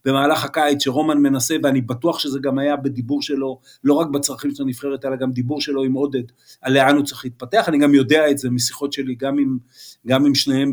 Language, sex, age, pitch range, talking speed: Hebrew, male, 50-69, 130-160 Hz, 220 wpm